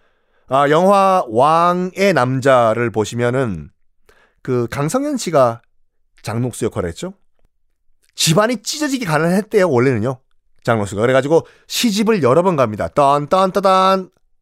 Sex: male